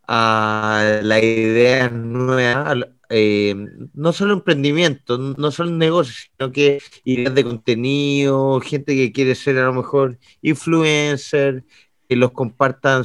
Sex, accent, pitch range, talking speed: male, Spanish, 120-145 Hz, 125 wpm